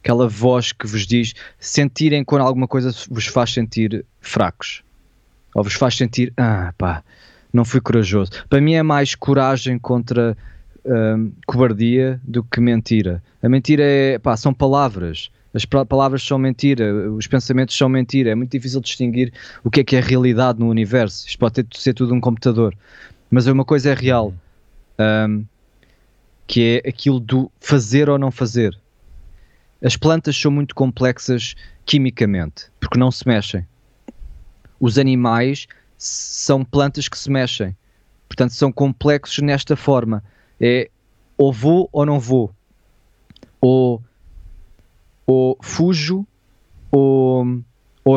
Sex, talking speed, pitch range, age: male, 145 wpm, 110-135 Hz, 20-39